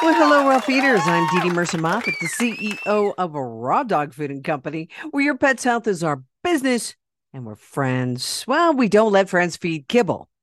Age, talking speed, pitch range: 50-69, 195 wpm, 140-185 Hz